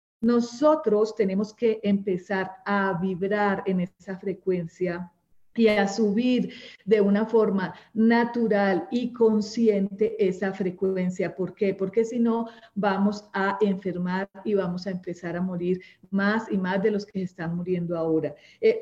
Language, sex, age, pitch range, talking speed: Spanish, female, 40-59, 190-230 Hz, 140 wpm